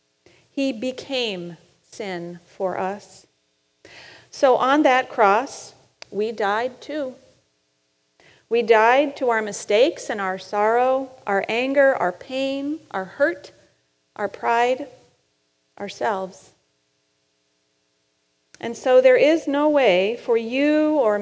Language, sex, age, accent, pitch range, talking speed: English, female, 40-59, American, 195-260 Hz, 105 wpm